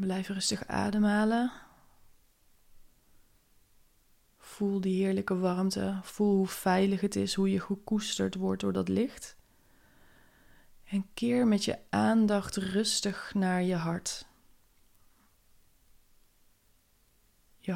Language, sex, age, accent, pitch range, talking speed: Dutch, female, 20-39, Dutch, 175-200 Hz, 100 wpm